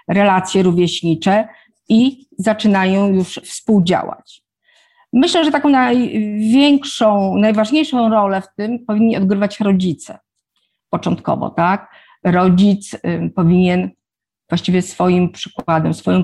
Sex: female